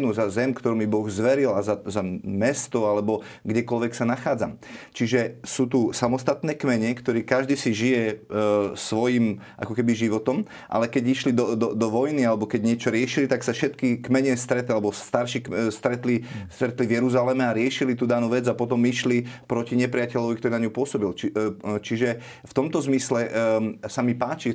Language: Slovak